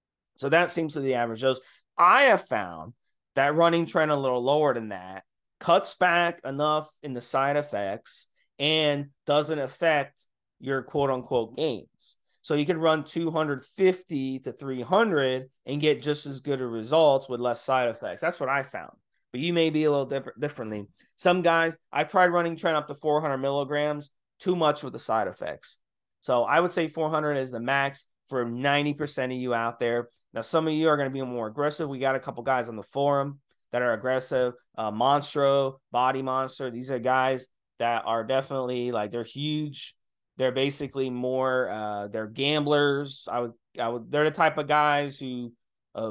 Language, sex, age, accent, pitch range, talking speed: English, male, 30-49, American, 125-150 Hz, 185 wpm